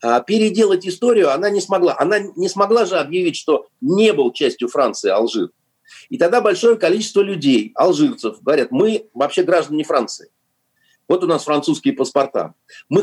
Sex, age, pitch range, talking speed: male, 50-69, 145-235 Hz, 150 wpm